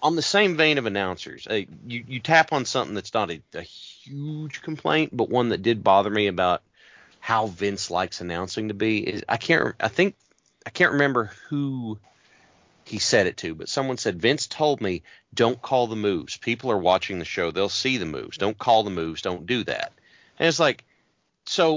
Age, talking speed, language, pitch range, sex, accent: 40-59, 190 wpm, English, 105-140 Hz, male, American